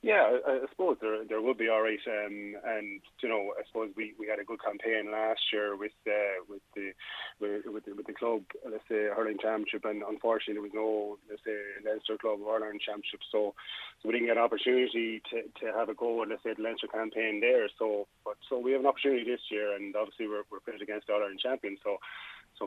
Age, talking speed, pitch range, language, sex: 20-39, 235 wpm, 105-115 Hz, English, male